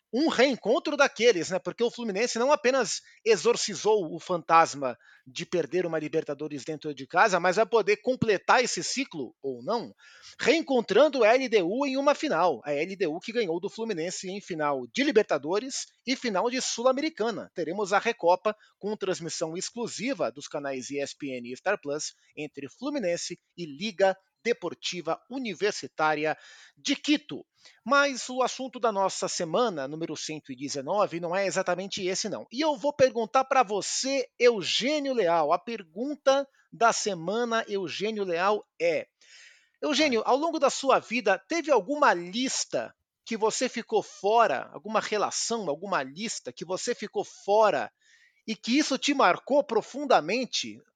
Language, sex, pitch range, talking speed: Portuguese, male, 175-265 Hz, 145 wpm